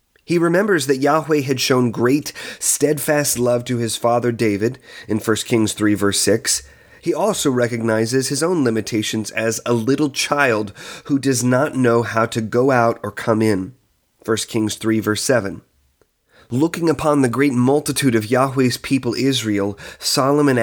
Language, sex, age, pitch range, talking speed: English, male, 30-49, 110-135 Hz, 160 wpm